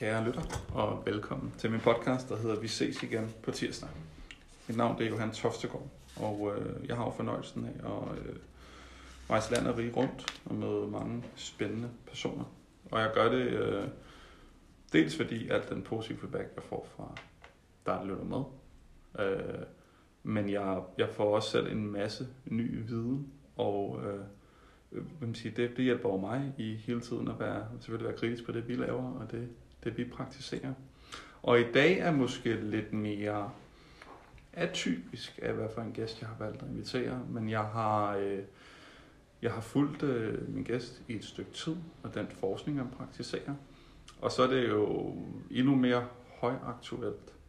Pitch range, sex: 100-125 Hz, male